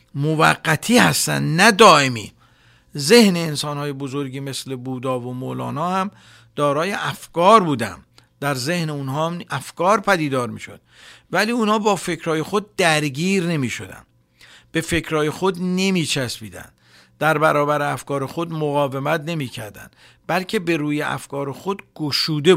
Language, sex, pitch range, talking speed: Persian, male, 135-180 Hz, 120 wpm